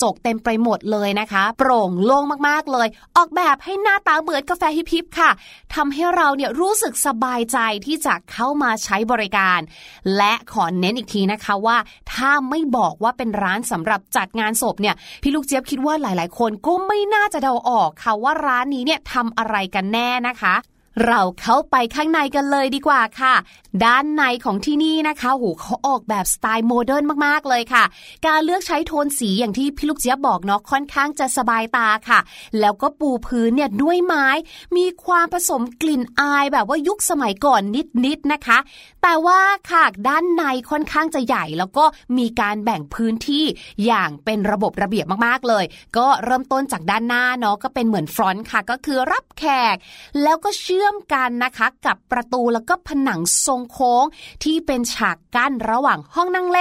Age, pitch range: 20-39, 225-305 Hz